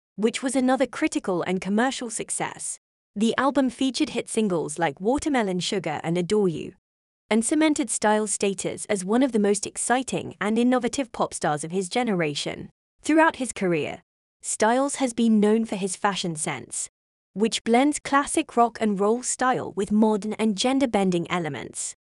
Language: English